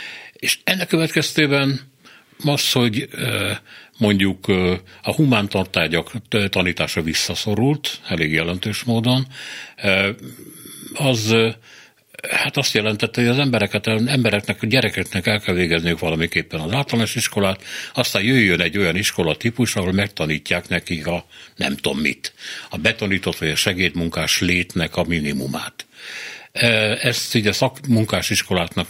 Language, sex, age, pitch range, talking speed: Hungarian, male, 60-79, 90-115 Hz, 110 wpm